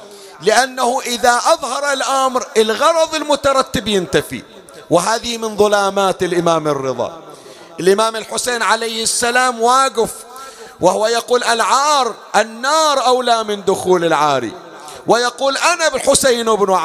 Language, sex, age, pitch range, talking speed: Arabic, male, 40-59, 165-245 Hz, 105 wpm